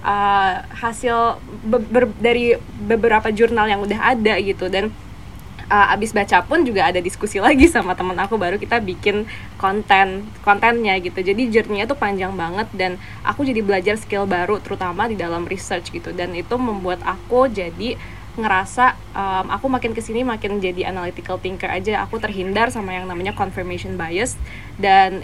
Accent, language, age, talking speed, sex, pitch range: native, Indonesian, 10-29, 160 wpm, female, 190-230 Hz